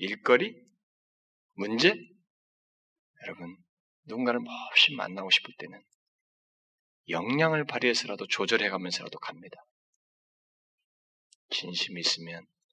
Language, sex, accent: Korean, male, native